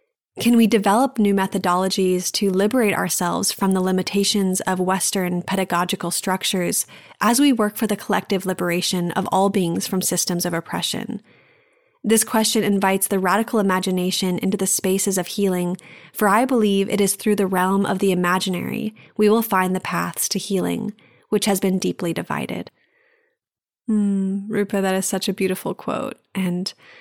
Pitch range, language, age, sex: 180-210 Hz, English, 20-39, female